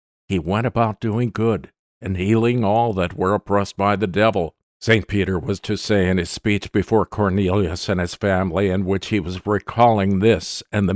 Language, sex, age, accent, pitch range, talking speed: English, male, 50-69, American, 95-120 Hz, 190 wpm